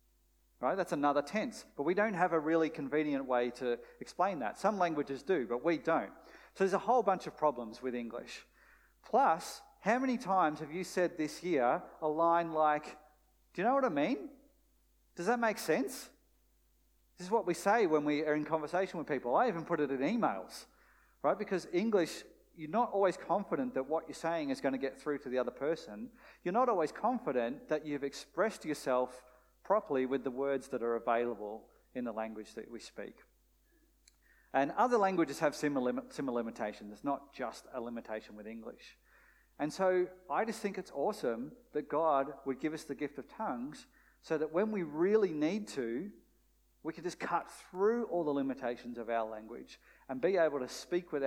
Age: 40-59